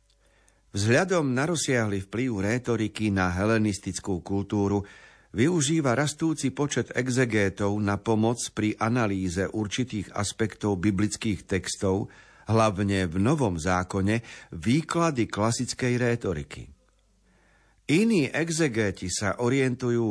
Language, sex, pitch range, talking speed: Slovak, male, 100-125 Hz, 95 wpm